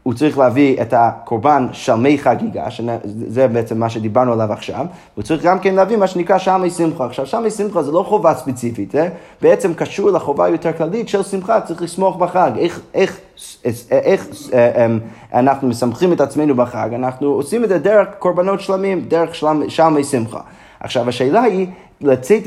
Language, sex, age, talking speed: Hebrew, male, 30-49, 180 wpm